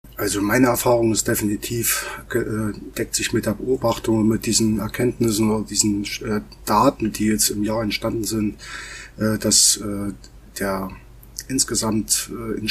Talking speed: 125 wpm